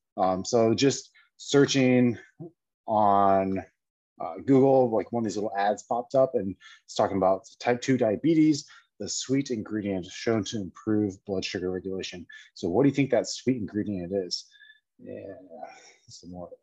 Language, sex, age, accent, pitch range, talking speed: English, male, 30-49, American, 100-140 Hz, 155 wpm